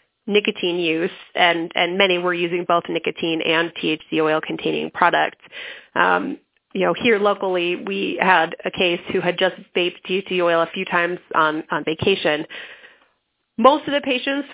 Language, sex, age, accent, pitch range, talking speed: English, female, 30-49, American, 170-205 Hz, 155 wpm